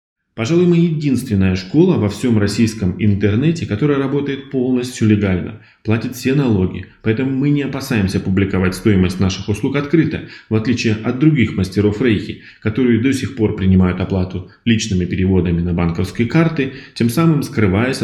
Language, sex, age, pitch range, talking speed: Russian, male, 20-39, 100-135 Hz, 145 wpm